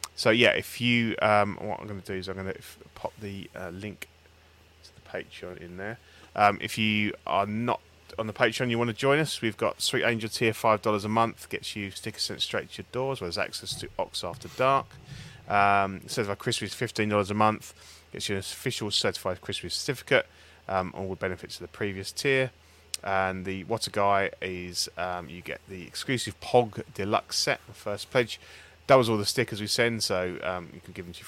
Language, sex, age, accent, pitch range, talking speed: English, male, 30-49, British, 90-110 Hz, 220 wpm